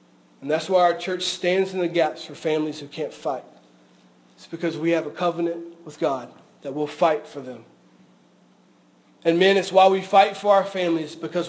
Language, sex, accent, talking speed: English, male, American, 195 wpm